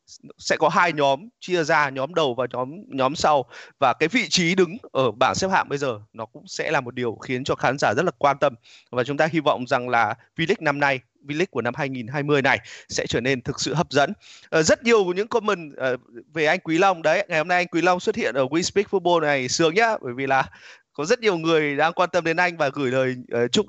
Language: Vietnamese